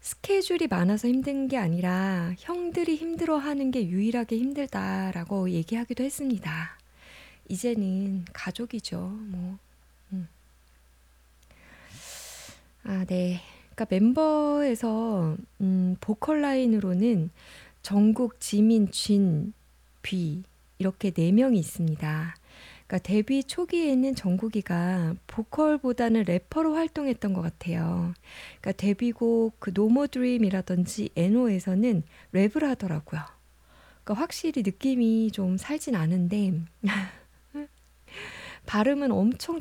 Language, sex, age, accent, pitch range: Korean, female, 20-39, native, 180-245 Hz